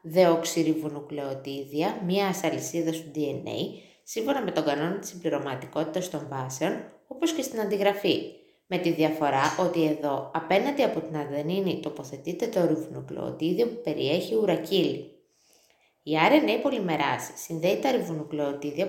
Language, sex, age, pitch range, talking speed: Greek, female, 20-39, 150-200 Hz, 125 wpm